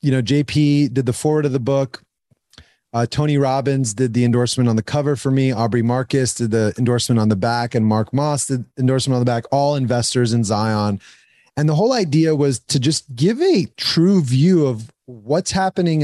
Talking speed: 200 wpm